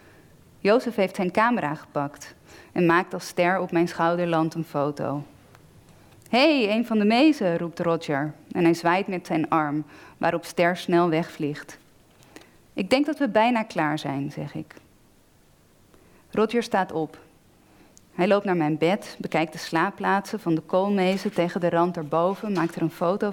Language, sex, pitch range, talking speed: Dutch, female, 160-210 Hz, 160 wpm